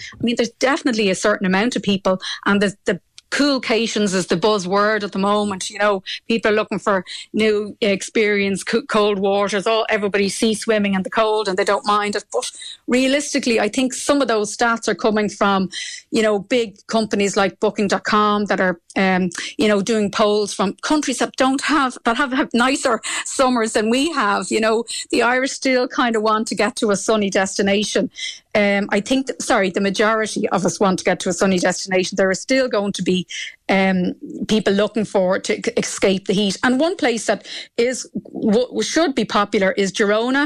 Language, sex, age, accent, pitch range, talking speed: English, female, 30-49, Irish, 200-240 Hz, 200 wpm